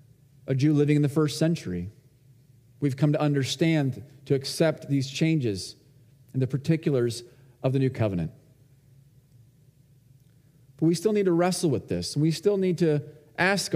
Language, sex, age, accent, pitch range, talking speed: English, male, 40-59, American, 125-155 Hz, 155 wpm